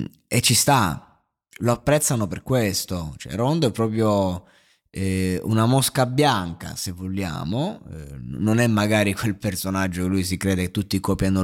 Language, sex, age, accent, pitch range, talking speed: Italian, male, 20-39, native, 95-115 Hz, 145 wpm